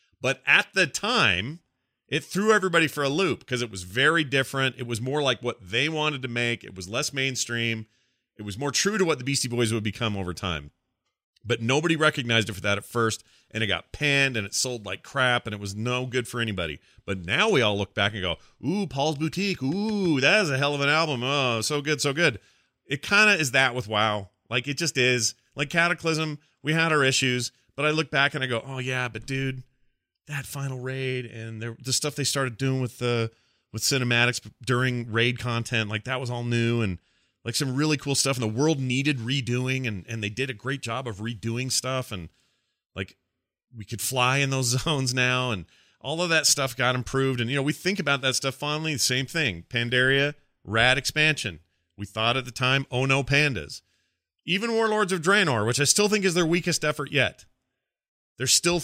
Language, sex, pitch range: English, male, 115-145 Hz